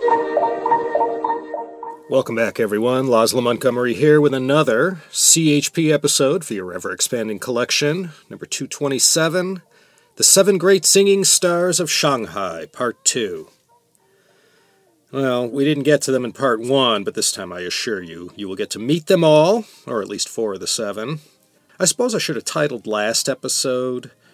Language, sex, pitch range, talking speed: English, male, 115-160 Hz, 155 wpm